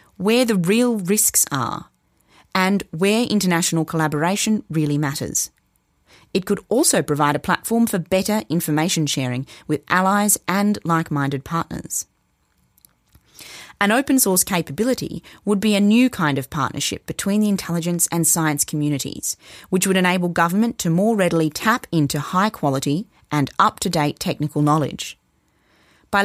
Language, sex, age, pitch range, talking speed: English, female, 30-49, 150-205 Hz, 135 wpm